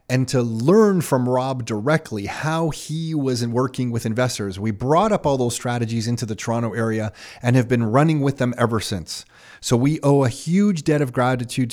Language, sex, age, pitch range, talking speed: English, male, 30-49, 120-145 Hz, 200 wpm